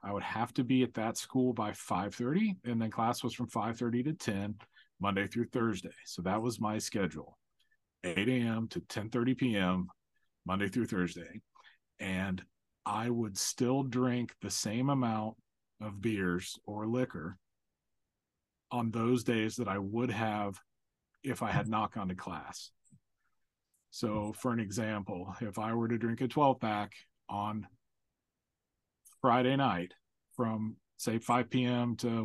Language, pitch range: English, 100-120 Hz